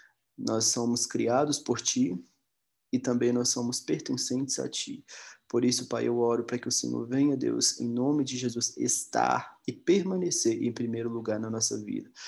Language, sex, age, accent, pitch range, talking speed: Portuguese, male, 20-39, Brazilian, 110-125 Hz, 175 wpm